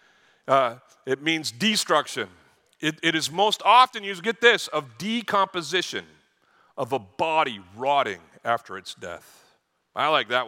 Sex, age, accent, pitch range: male, 50-69, American, 130-195 Hz